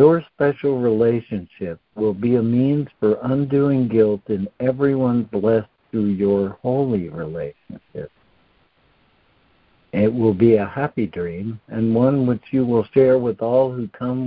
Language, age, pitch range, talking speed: English, 60-79, 105-130 Hz, 140 wpm